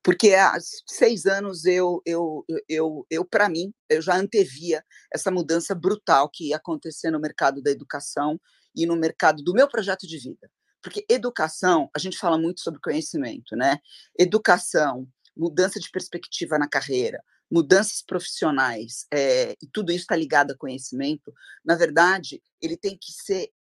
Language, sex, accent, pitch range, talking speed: Portuguese, female, Brazilian, 150-195 Hz, 150 wpm